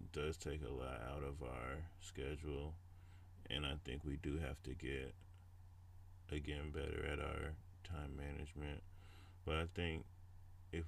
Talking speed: 145 wpm